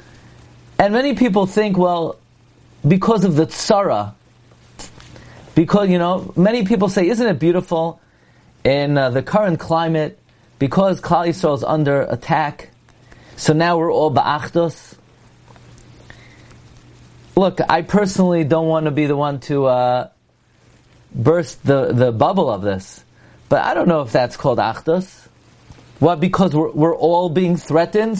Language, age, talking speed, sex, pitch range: English, 30-49, 140 wpm, male, 145-195 Hz